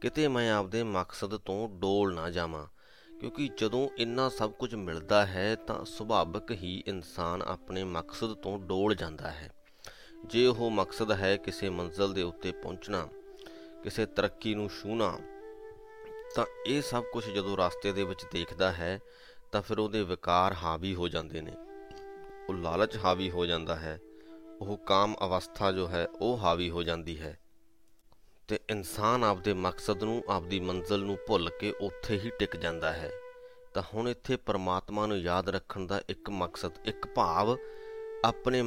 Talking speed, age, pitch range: 155 wpm, 30-49, 90-120 Hz